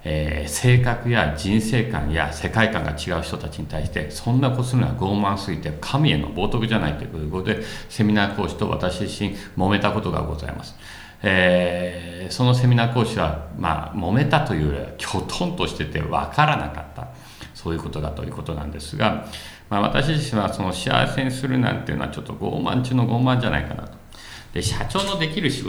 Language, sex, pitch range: Japanese, male, 80-125 Hz